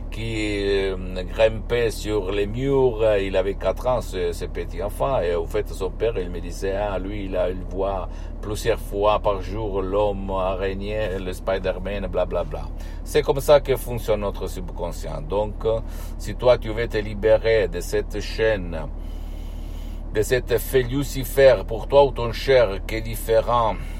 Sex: male